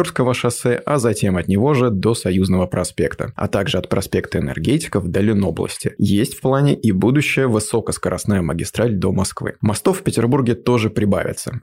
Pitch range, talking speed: 95-120 Hz, 155 wpm